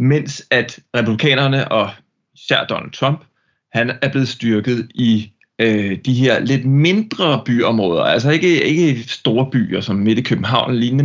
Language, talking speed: English, 150 wpm